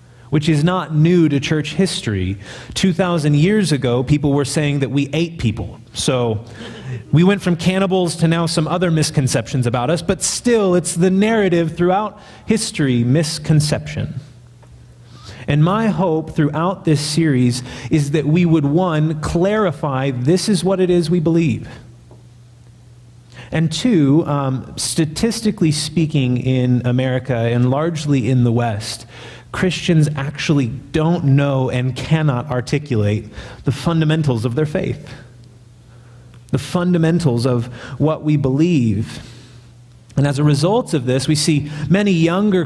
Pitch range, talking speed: 120-165 Hz, 135 wpm